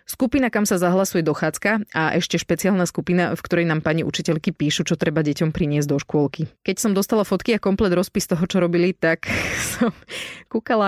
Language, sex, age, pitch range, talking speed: Slovak, female, 30-49, 155-200 Hz, 190 wpm